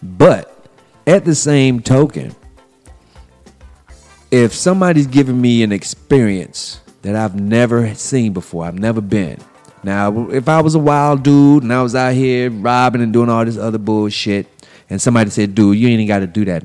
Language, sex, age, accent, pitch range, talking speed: English, male, 30-49, American, 110-145 Hz, 175 wpm